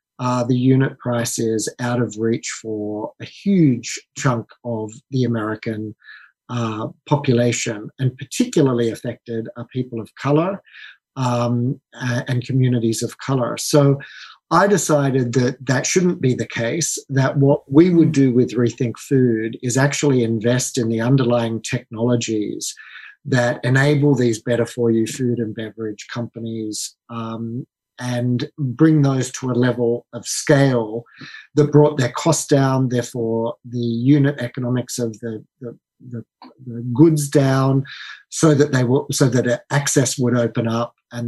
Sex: male